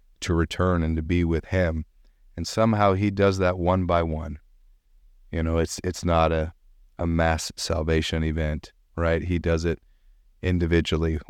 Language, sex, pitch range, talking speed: English, male, 80-90 Hz, 160 wpm